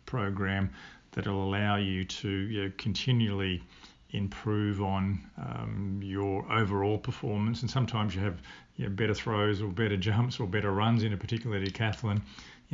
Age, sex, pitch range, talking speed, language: 50-69, male, 100-110 Hz, 155 wpm, English